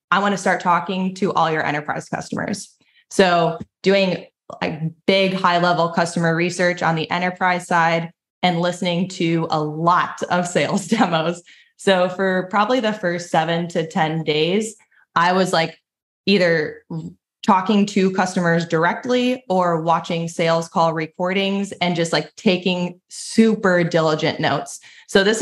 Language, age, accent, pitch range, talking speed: English, 20-39, American, 170-205 Hz, 145 wpm